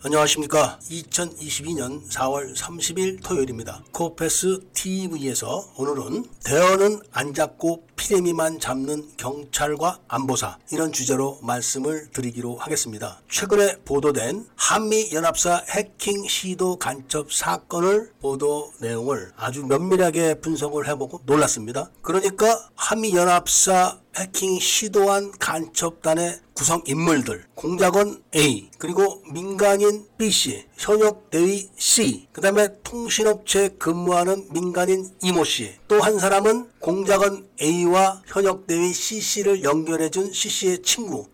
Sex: male